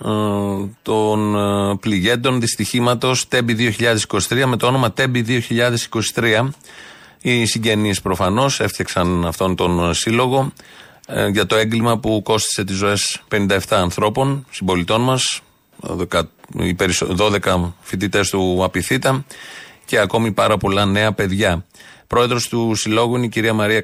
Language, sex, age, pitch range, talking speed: Greek, male, 40-59, 100-125 Hz, 110 wpm